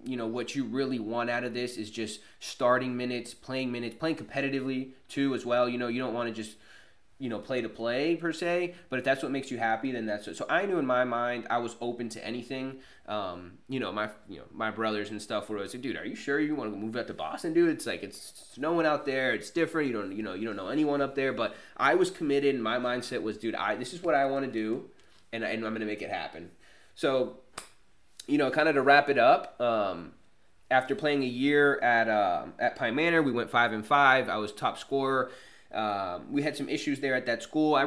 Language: English